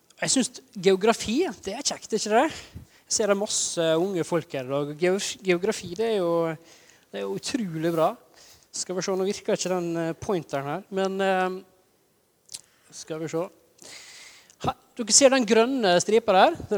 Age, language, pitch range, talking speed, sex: 20-39, English, 160-195 Hz, 165 wpm, male